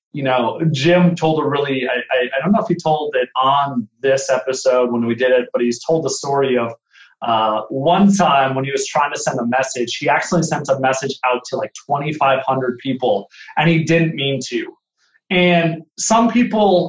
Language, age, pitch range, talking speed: English, 30-49, 135-180 Hz, 190 wpm